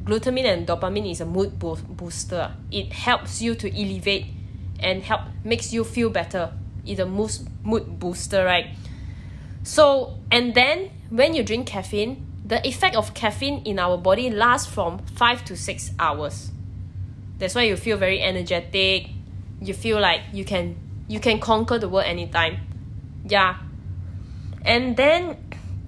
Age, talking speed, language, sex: 20-39, 145 wpm, Malay, female